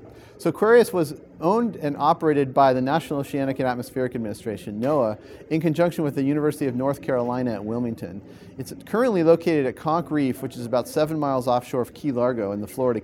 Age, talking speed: 40-59, 195 wpm